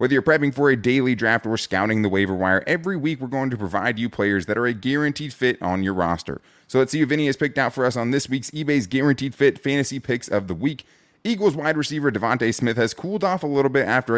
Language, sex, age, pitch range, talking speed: English, male, 30-49, 105-140 Hz, 260 wpm